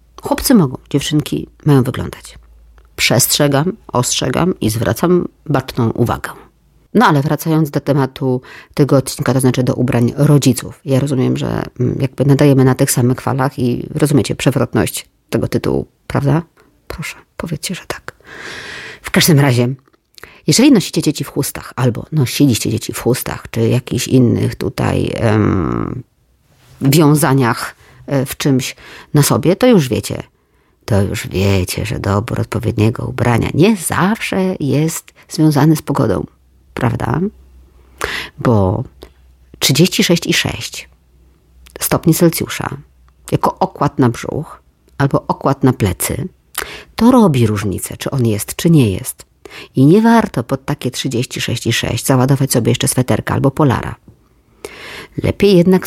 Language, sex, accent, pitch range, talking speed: Polish, female, native, 115-150 Hz, 125 wpm